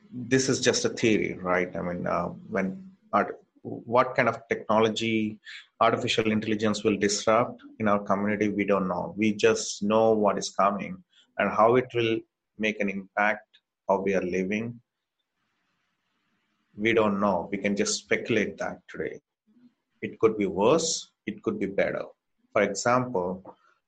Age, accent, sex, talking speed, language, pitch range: 30-49, Indian, male, 155 wpm, English, 100-145 Hz